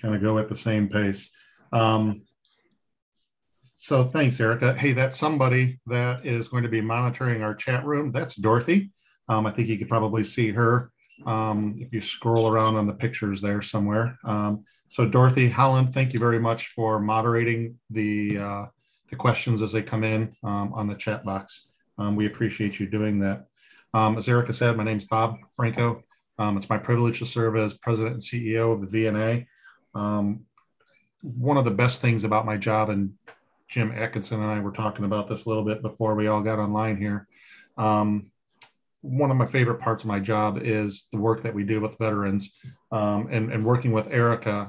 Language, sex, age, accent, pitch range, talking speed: English, male, 40-59, American, 105-120 Hz, 190 wpm